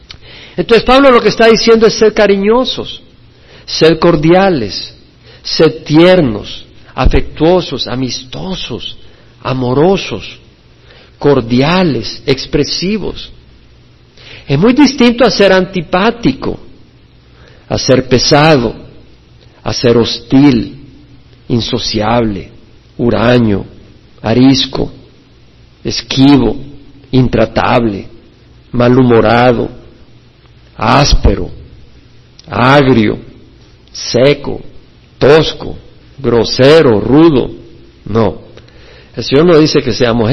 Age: 50-69